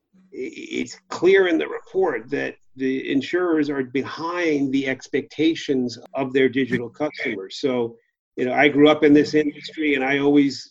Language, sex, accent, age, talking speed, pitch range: English, male, American, 40-59, 155 wpm, 130-150 Hz